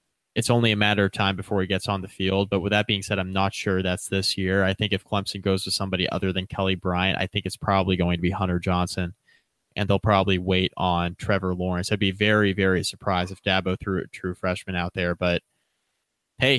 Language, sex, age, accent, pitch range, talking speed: English, male, 20-39, American, 95-105 Hz, 235 wpm